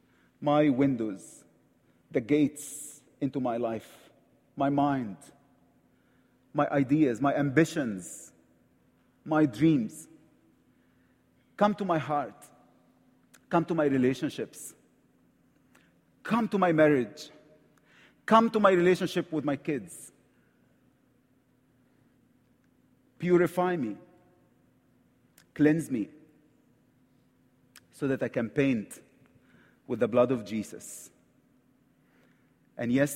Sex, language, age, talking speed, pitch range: male, English, 40-59, 90 wpm, 125-160 Hz